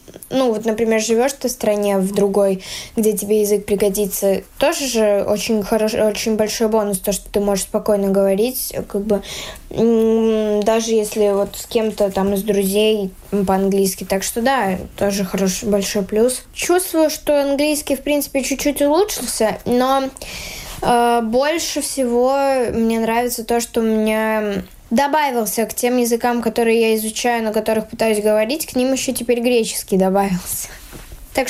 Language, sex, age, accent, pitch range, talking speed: Russian, female, 10-29, native, 210-255 Hz, 150 wpm